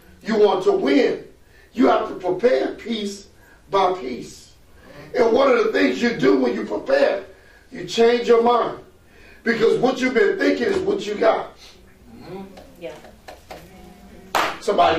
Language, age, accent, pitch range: English, 40-59, American, 230-375 Hz